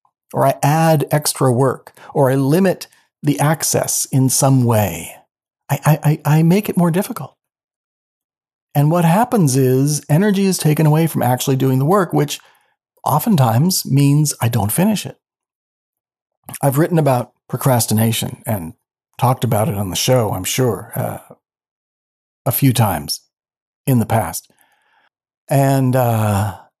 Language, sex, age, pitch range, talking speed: English, male, 40-59, 125-165 Hz, 140 wpm